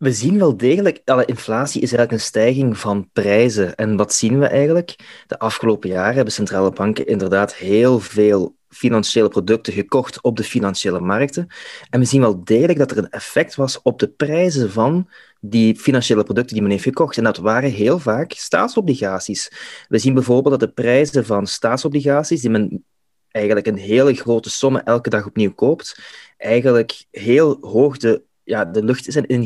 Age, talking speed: 20-39, 180 wpm